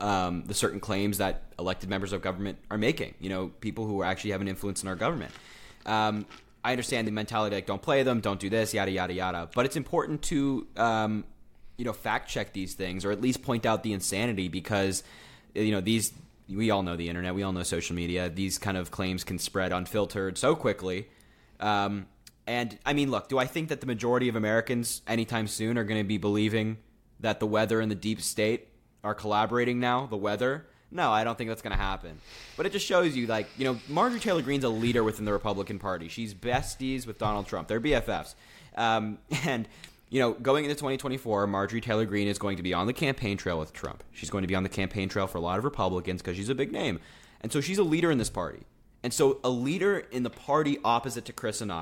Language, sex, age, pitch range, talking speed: English, male, 20-39, 95-125 Hz, 230 wpm